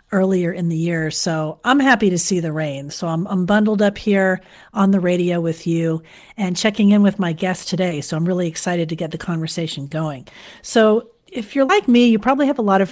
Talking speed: 230 wpm